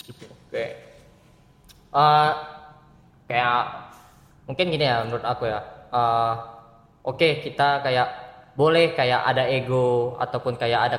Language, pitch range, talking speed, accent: Indonesian, 125-160 Hz, 115 wpm, native